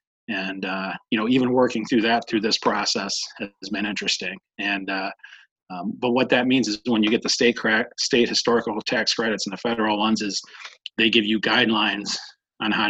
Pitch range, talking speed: 105-120 Hz, 200 wpm